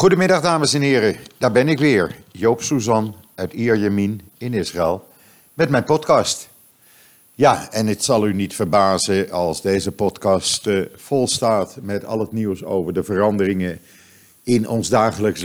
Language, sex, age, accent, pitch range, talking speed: Dutch, male, 50-69, Dutch, 100-130 Hz, 150 wpm